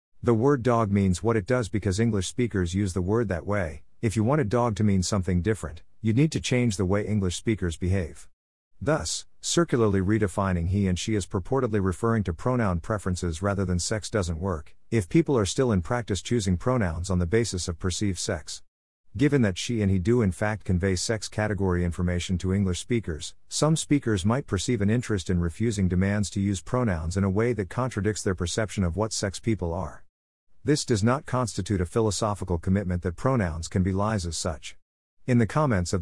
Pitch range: 90-115 Hz